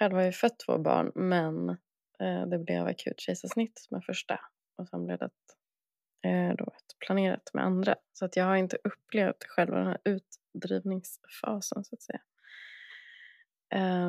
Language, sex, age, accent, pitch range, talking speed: Swedish, female, 20-39, native, 175-210 Hz, 130 wpm